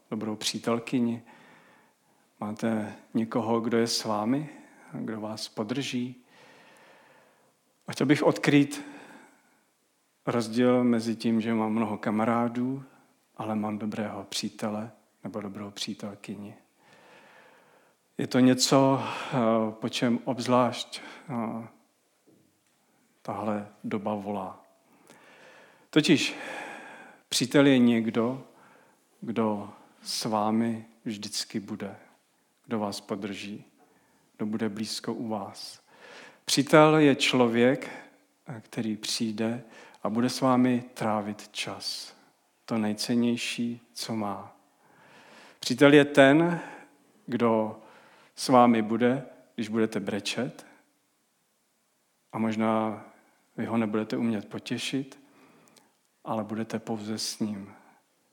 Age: 40-59